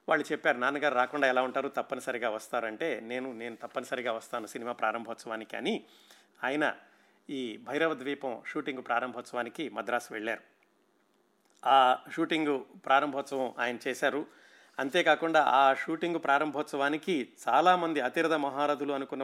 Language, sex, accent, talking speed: Telugu, male, native, 110 wpm